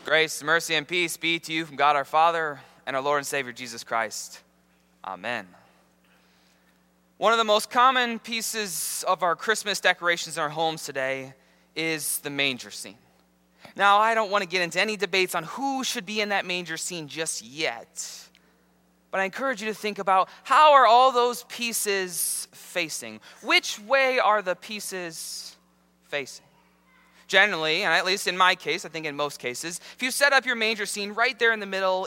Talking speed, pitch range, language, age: 185 wpm, 140-215 Hz, English, 20-39